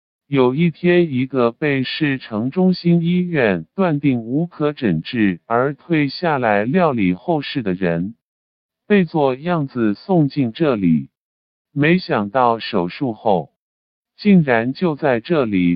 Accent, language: American, Chinese